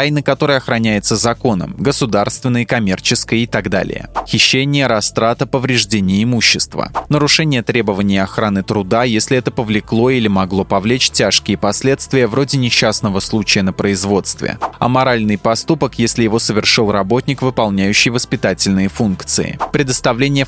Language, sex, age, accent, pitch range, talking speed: Russian, male, 20-39, native, 105-130 Hz, 115 wpm